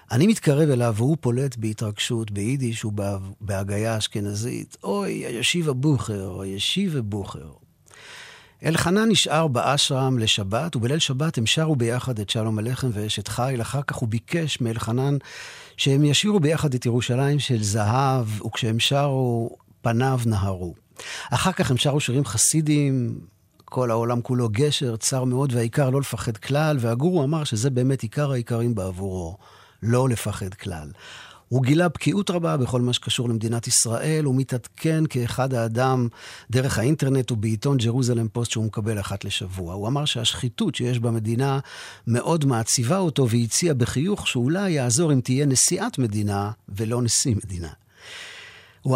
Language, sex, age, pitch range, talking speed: Hebrew, male, 50-69, 115-140 Hz, 140 wpm